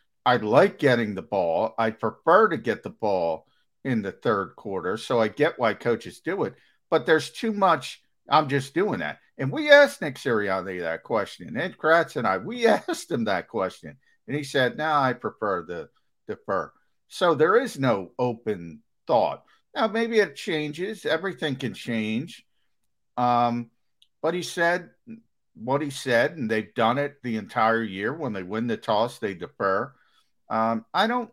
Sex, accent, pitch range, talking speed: male, American, 105-155 Hz, 175 wpm